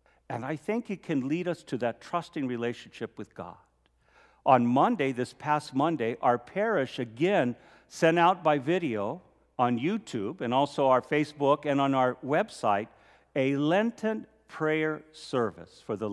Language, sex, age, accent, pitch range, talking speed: English, male, 50-69, American, 135-180 Hz, 155 wpm